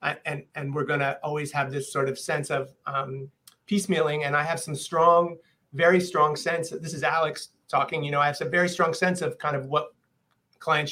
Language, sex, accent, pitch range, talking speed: English, male, American, 135-155 Hz, 225 wpm